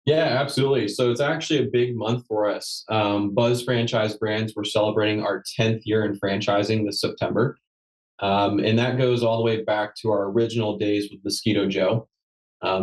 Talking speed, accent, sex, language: 180 wpm, American, male, English